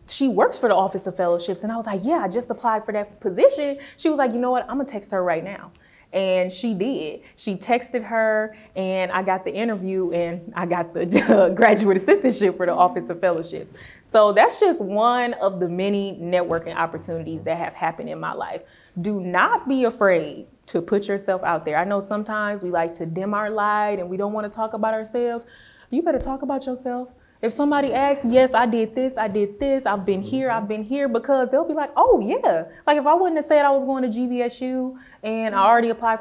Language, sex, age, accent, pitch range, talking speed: English, female, 20-39, American, 195-260 Hz, 225 wpm